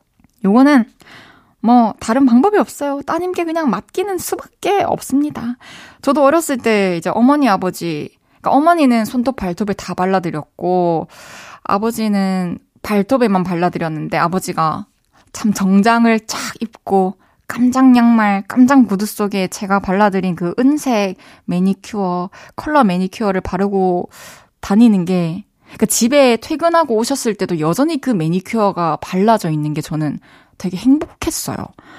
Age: 20-39